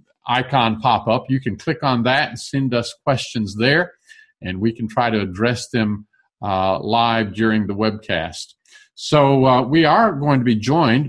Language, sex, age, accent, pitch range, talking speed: English, male, 50-69, American, 110-145 Hz, 180 wpm